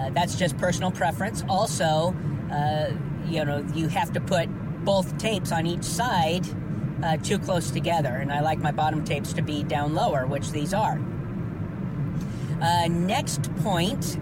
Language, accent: English, American